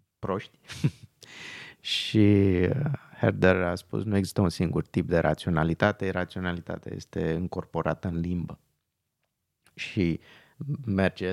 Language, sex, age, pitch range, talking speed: Romanian, male, 30-49, 85-105 Hz, 100 wpm